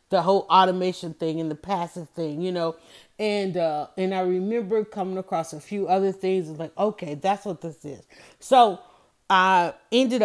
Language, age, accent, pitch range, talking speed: English, 30-49, American, 170-205 Hz, 180 wpm